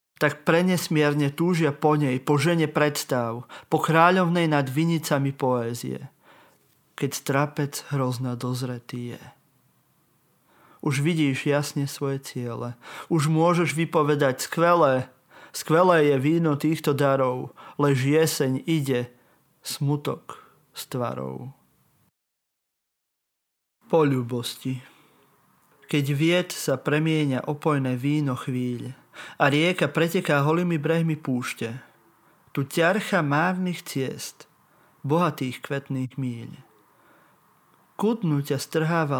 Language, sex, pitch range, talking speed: Slovak, male, 135-160 Hz, 95 wpm